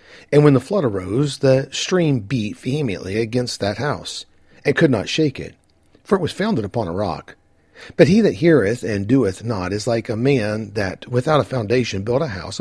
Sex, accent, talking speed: male, American, 200 wpm